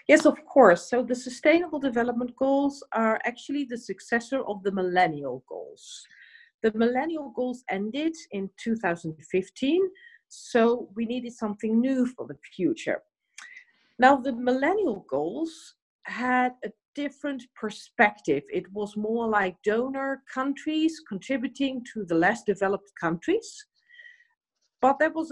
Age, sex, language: 50-69, female, English